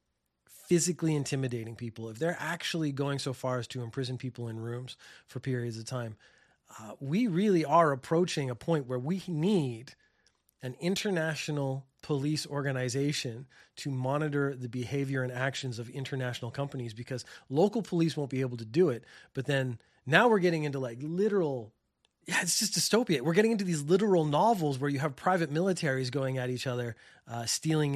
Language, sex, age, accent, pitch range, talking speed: English, male, 30-49, American, 125-165 Hz, 170 wpm